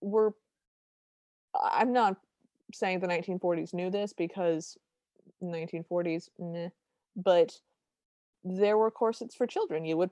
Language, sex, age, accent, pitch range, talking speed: English, female, 20-39, American, 175-220 Hz, 115 wpm